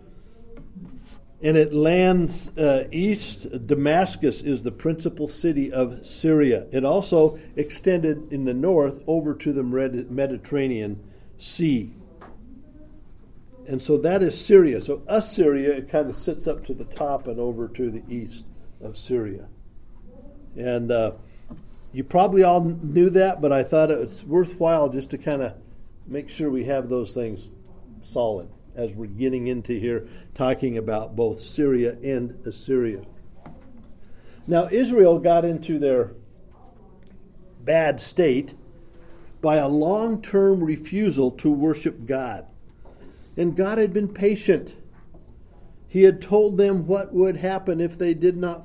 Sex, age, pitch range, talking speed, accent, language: male, 50-69, 120-170 Hz, 135 wpm, American, English